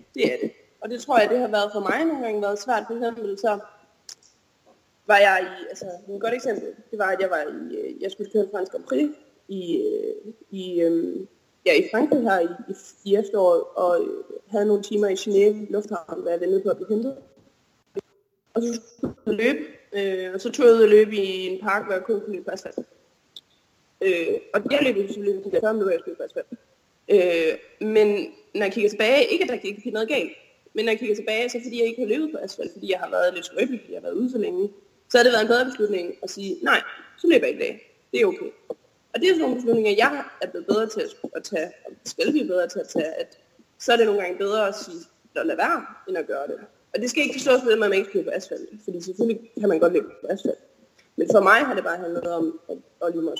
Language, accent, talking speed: Danish, native, 240 wpm